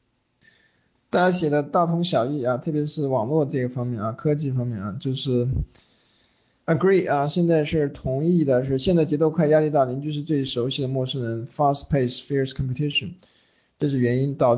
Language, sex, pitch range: Chinese, male, 120-150 Hz